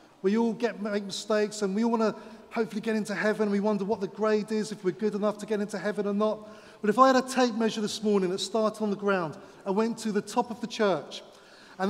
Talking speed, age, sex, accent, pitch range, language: 265 wpm, 30-49, male, British, 190-215 Hz, English